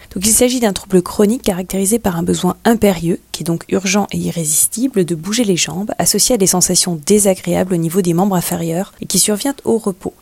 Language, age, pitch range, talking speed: French, 30-49, 180-220 Hz, 210 wpm